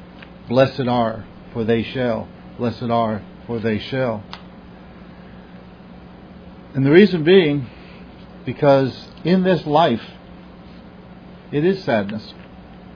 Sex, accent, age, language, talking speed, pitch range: male, American, 60-79, English, 95 wpm, 95-135 Hz